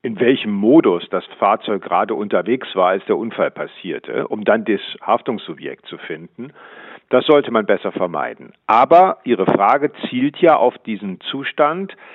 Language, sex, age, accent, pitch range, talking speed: German, male, 50-69, German, 105-140 Hz, 155 wpm